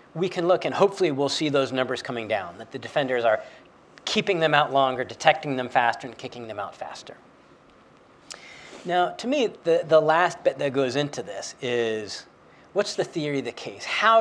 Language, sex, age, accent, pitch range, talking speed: English, male, 40-59, American, 130-185 Hz, 195 wpm